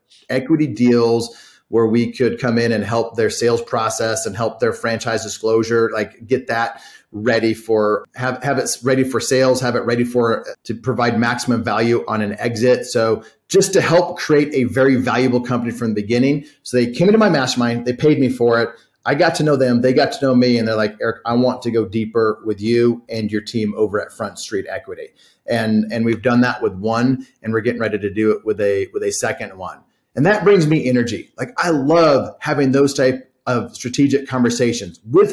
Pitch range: 115-130 Hz